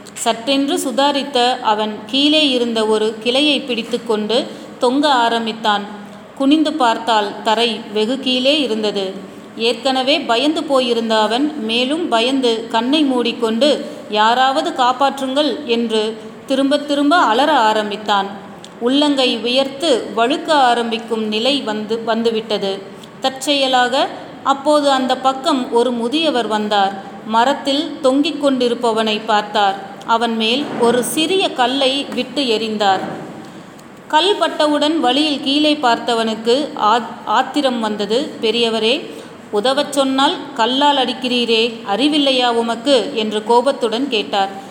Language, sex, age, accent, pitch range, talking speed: Tamil, female, 30-49, native, 220-275 Hz, 100 wpm